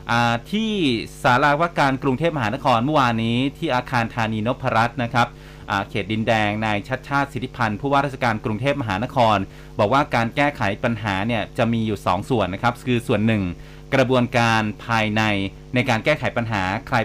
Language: Thai